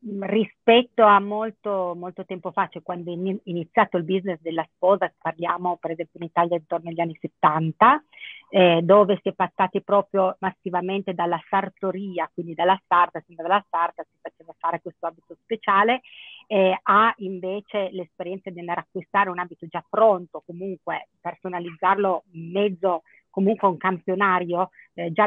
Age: 40-59